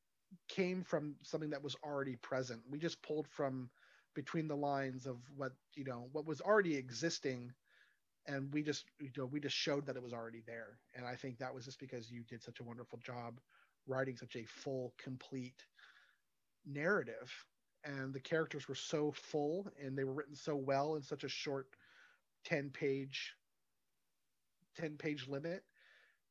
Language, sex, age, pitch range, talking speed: English, male, 30-49, 125-150 Hz, 170 wpm